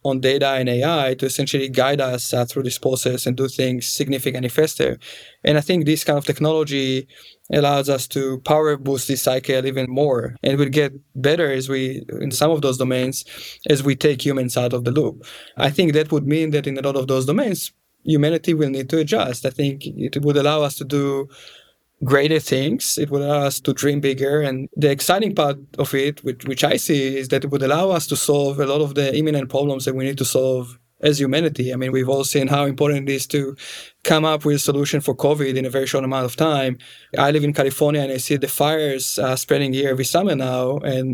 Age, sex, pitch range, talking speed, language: 20-39, male, 135-150 Hz, 230 wpm, English